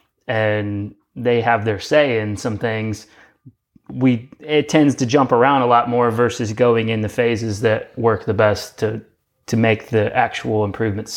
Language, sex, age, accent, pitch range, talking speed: English, male, 20-39, American, 110-125 Hz, 170 wpm